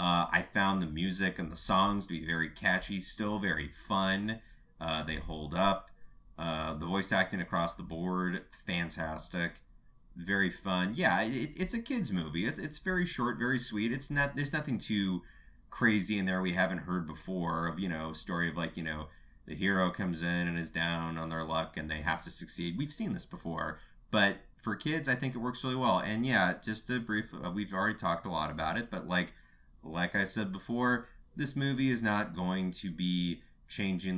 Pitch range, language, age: 80-105 Hz, English, 30-49